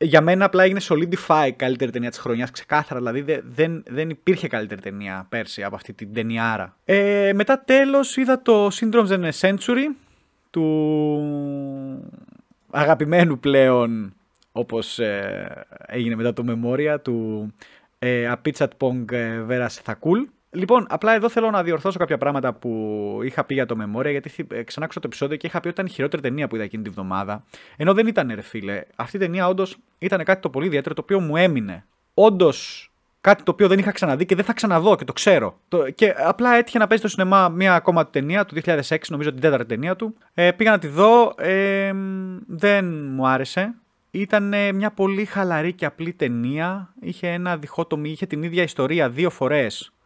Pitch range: 130-195 Hz